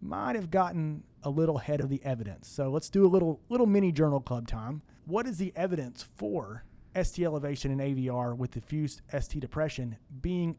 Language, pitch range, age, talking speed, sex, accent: English, 125-165 Hz, 30-49, 185 wpm, male, American